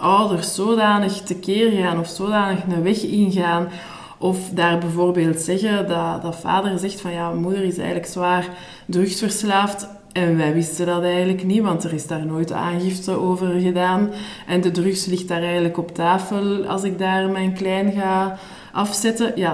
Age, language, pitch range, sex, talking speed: 20-39, Dutch, 175-220 Hz, female, 165 wpm